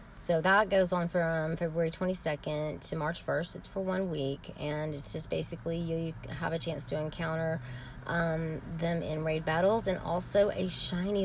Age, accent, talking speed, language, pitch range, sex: 30-49, American, 180 wpm, English, 155-200 Hz, female